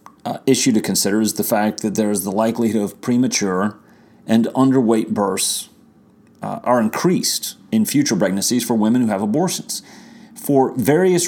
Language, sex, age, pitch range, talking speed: English, male, 30-49, 110-145 Hz, 160 wpm